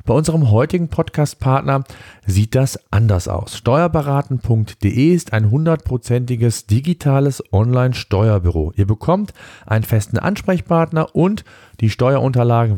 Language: German